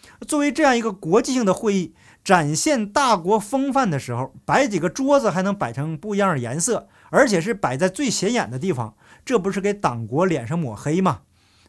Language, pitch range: Chinese, 150-220 Hz